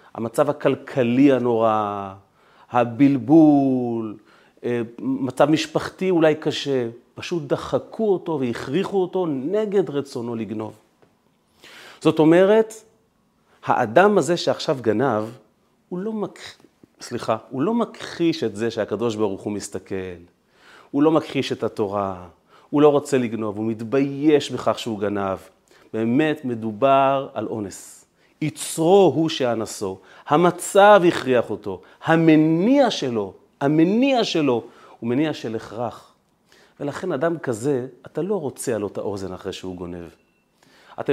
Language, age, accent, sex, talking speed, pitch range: Hebrew, 30-49, native, male, 115 wpm, 115-175 Hz